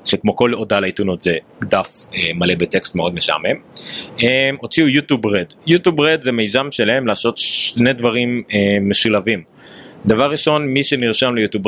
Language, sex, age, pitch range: Hebrew, male, 30-49, 105-140 Hz